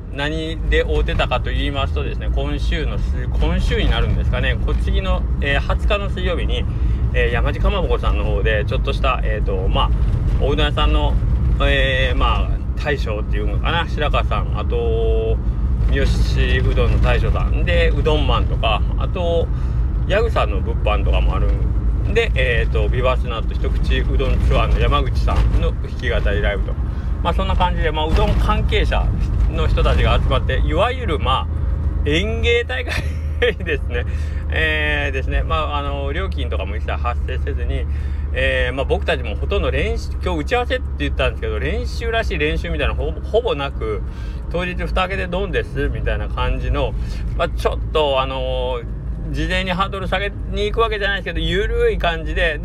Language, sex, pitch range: Japanese, male, 65-80 Hz